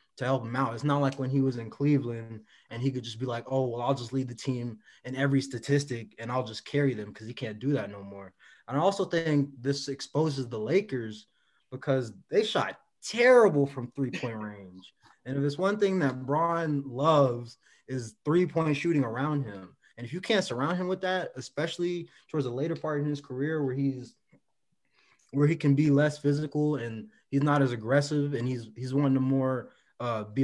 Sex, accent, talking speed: male, American, 210 wpm